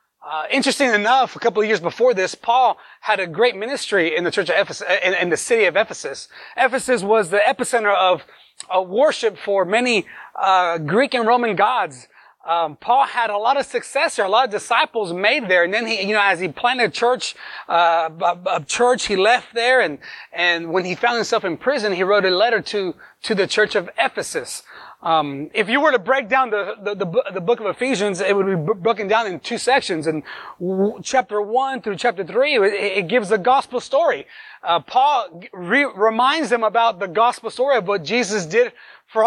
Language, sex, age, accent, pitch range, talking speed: English, male, 30-49, American, 200-255 Hz, 205 wpm